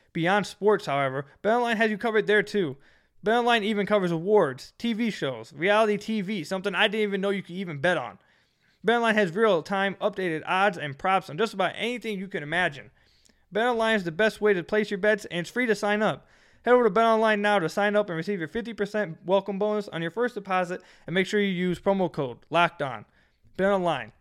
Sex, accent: male, American